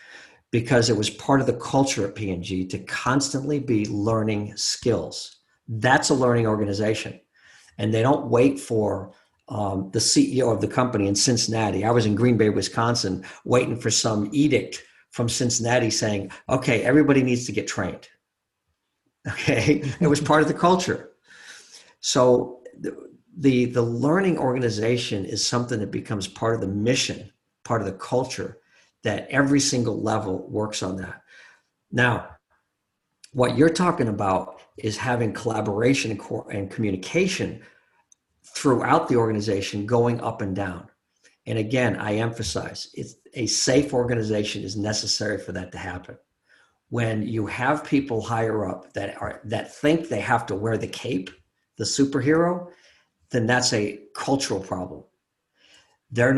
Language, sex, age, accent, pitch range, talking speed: English, male, 50-69, American, 105-125 Hz, 145 wpm